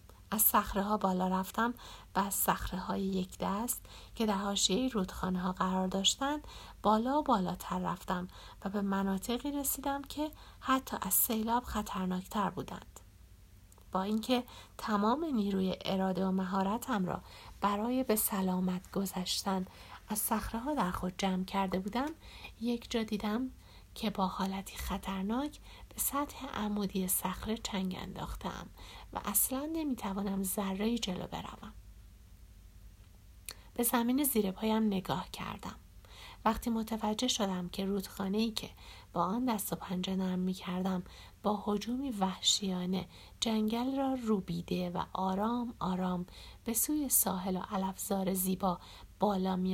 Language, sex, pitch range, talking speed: Persian, female, 185-225 Hz, 125 wpm